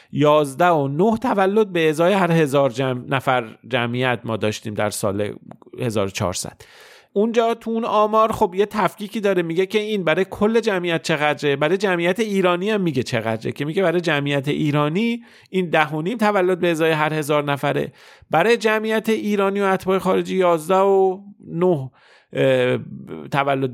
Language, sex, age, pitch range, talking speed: Persian, male, 40-59, 125-180 Hz, 150 wpm